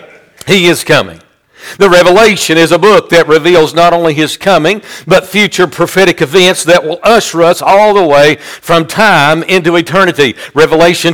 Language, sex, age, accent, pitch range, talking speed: English, male, 50-69, American, 160-200 Hz, 160 wpm